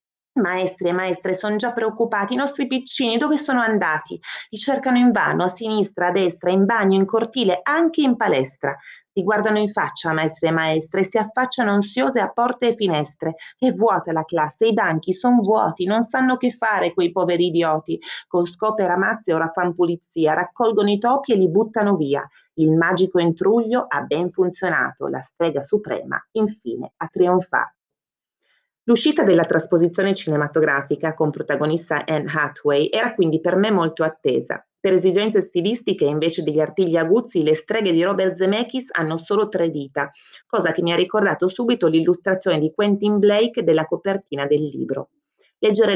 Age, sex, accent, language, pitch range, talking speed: 30-49, female, native, Italian, 160-210 Hz, 165 wpm